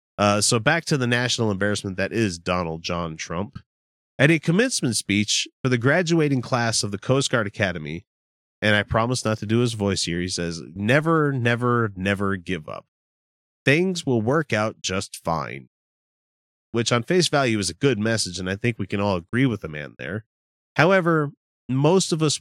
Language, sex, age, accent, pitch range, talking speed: English, male, 30-49, American, 90-140 Hz, 185 wpm